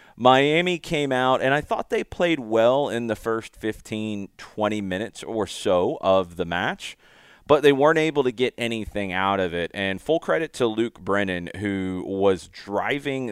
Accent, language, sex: American, English, male